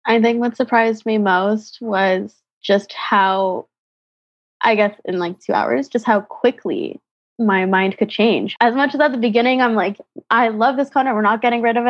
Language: English